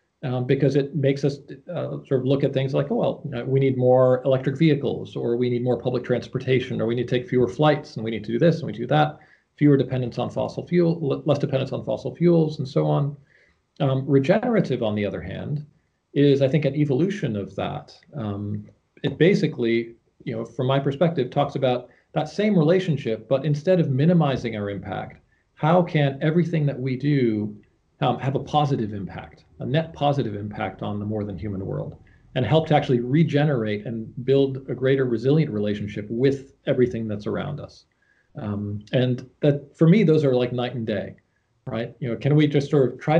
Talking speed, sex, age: 200 wpm, male, 40-59